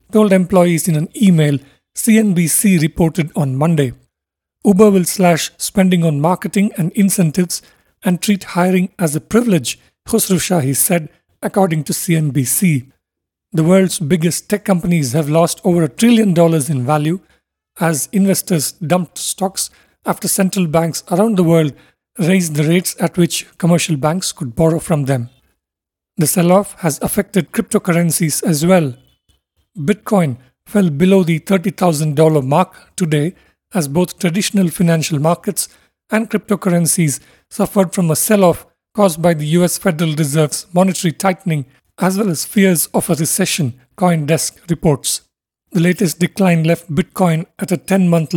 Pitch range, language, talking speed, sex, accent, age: 155-190 Hz, English, 140 wpm, male, Indian, 50-69